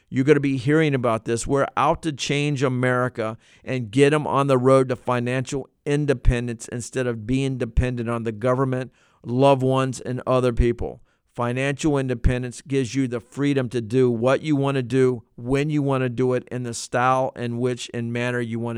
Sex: male